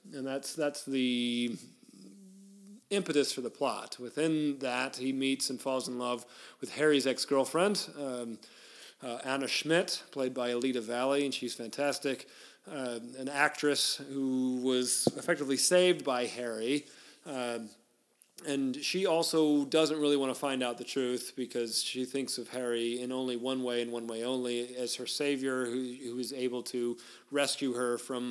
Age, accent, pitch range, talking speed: 40-59, American, 120-145 Hz, 160 wpm